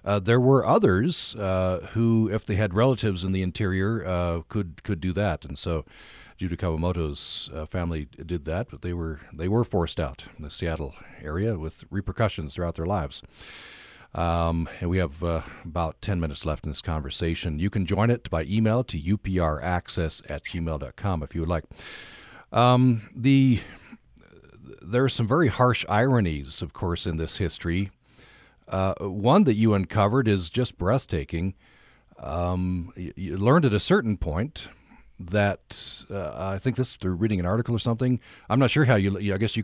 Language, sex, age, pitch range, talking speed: English, male, 40-59, 85-115 Hz, 175 wpm